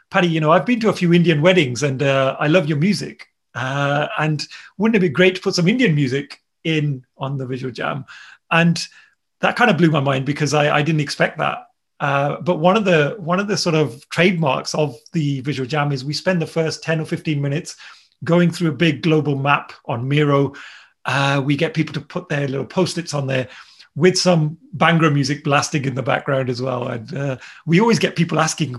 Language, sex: English, male